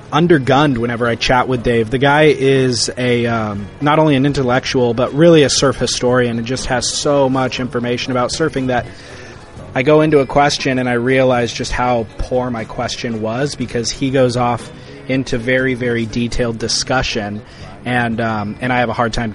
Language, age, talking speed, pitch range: English, 20-39, 185 wpm, 120-135 Hz